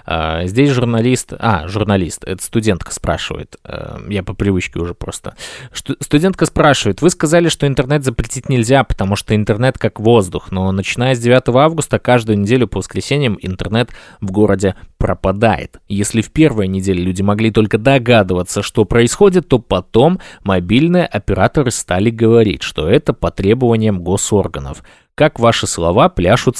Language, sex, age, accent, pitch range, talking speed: Russian, male, 20-39, native, 100-130 Hz, 140 wpm